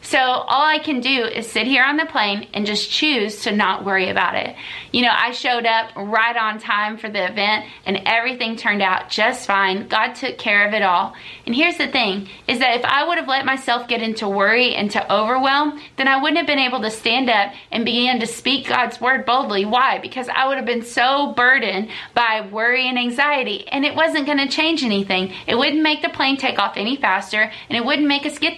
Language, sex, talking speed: English, female, 230 wpm